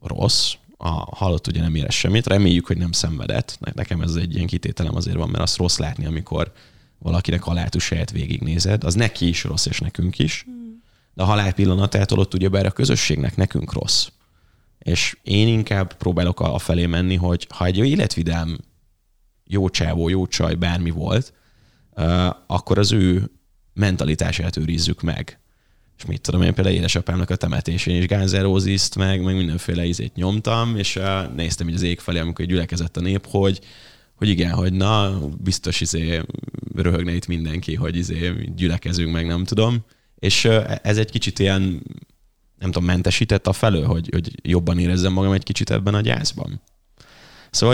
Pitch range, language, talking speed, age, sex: 85-105 Hz, Hungarian, 160 wpm, 20-39, male